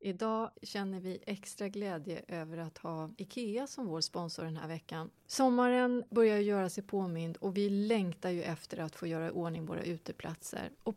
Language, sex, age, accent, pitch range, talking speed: Swedish, female, 30-49, native, 170-225 Hz, 180 wpm